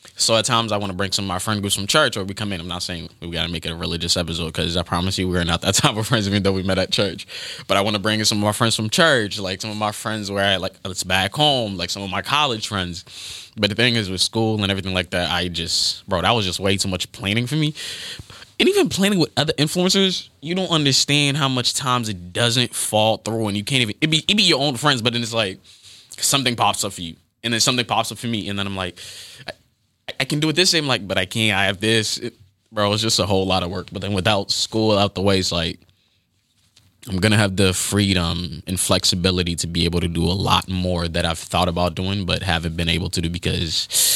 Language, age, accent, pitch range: English, 20-39, American, 90-110 Hz